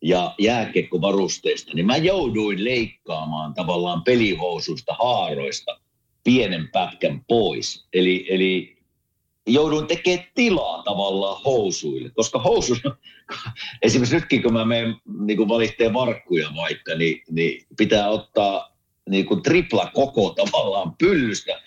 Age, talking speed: 50-69, 105 wpm